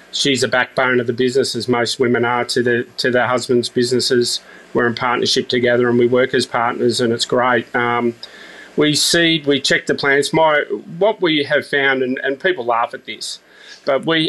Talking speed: 200 wpm